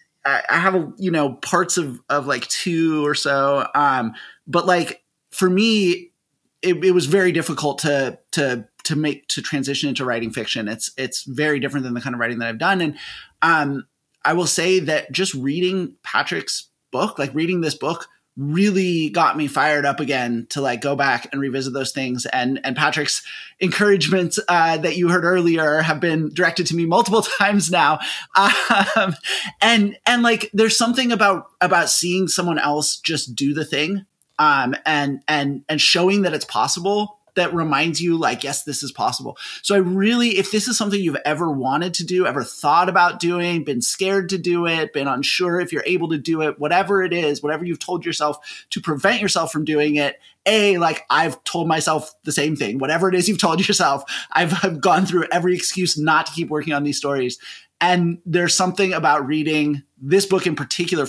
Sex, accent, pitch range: male, American, 145-185 Hz